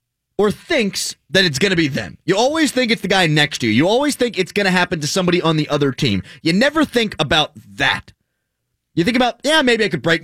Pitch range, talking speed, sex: 130-195 Hz, 250 wpm, male